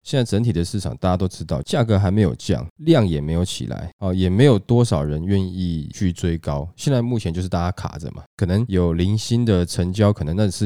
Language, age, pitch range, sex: Chinese, 20-39, 80-105 Hz, male